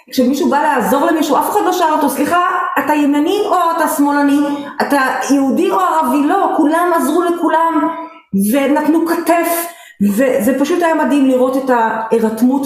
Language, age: Hebrew, 30-49